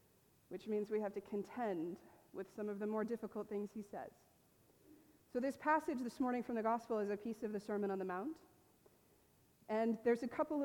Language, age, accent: English, 30-49, American